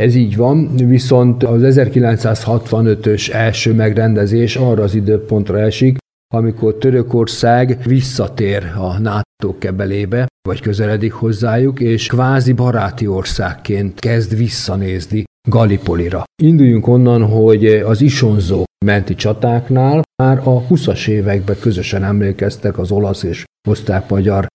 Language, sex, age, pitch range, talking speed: Hungarian, male, 50-69, 105-130 Hz, 110 wpm